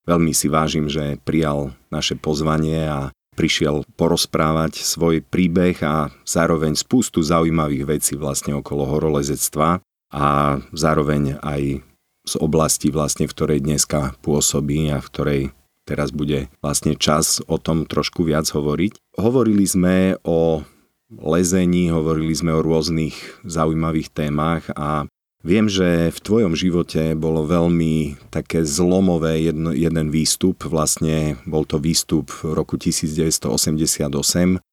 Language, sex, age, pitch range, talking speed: Slovak, male, 40-59, 75-85 Hz, 125 wpm